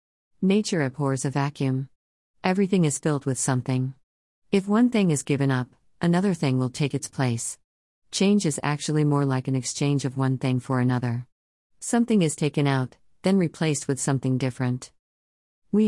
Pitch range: 130-160 Hz